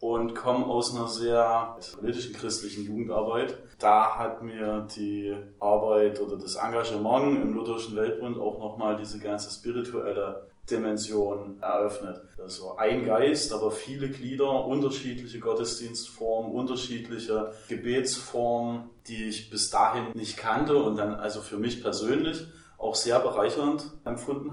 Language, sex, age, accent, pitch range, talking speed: German, male, 30-49, German, 105-120 Hz, 125 wpm